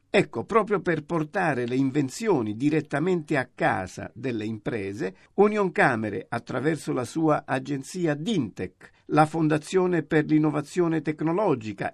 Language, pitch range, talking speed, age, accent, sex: Italian, 130-170 Hz, 115 wpm, 50-69, native, male